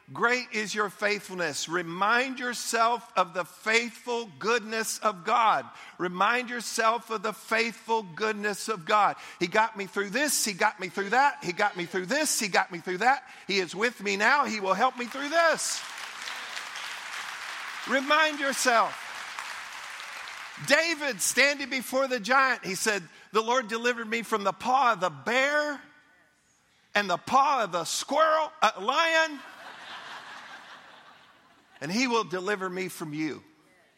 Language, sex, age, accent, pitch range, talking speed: English, male, 50-69, American, 180-245 Hz, 150 wpm